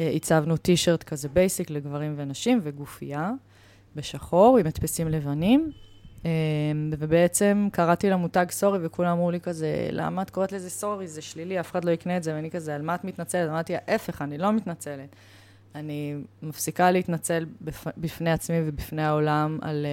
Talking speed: 160 wpm